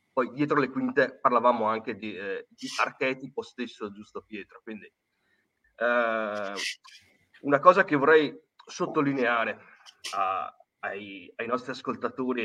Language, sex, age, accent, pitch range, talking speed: Italian, male, 30-49, native, 110-155 Hz, 120 wpm